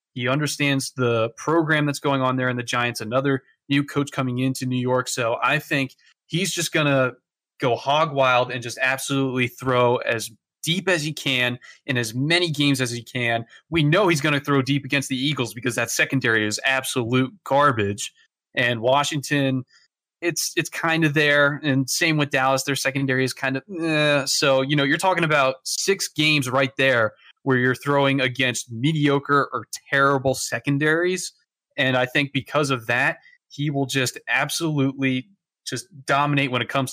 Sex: male